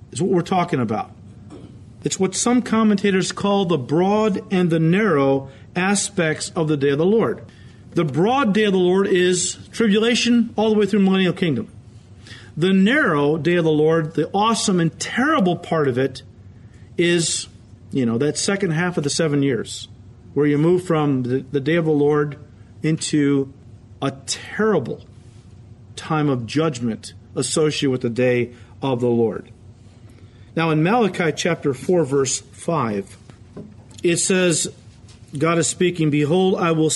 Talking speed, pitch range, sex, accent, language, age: 155 wpm, 120-180 Hz, male, American, English, 40-59